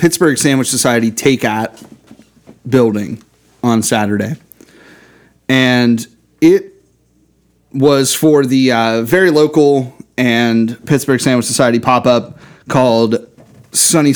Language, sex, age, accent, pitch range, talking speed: English, male, 30-49, American, 115-145 Hz, 100 wpm